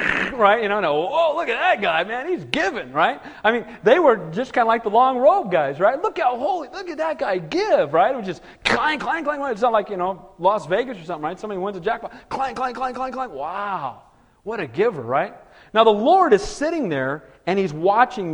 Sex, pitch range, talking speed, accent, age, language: male, 165-240 Hz, 240 wpm, American, 40-59, English